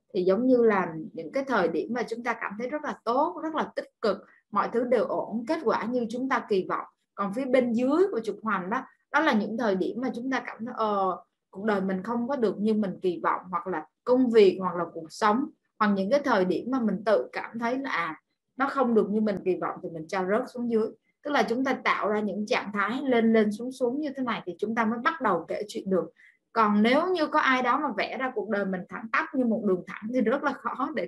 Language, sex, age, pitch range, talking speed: Vietnamese, female, 20-39, 205-260 Hz, 270 wpm